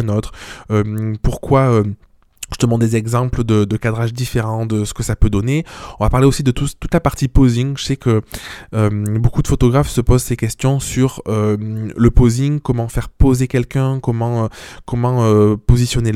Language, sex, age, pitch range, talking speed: French, male, 20-39, 110-130 Hz, 195 wpm